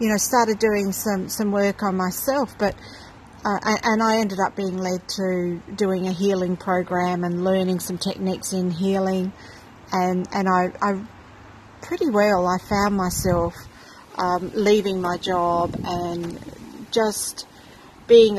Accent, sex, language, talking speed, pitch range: Australian, female, English, 140 wpm, 180-210 Hz